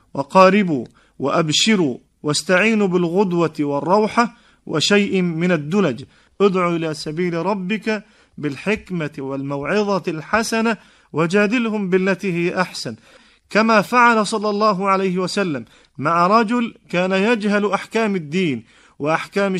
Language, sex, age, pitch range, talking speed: Arabic, male, 30-49, 175-225 Hz, 100 wpm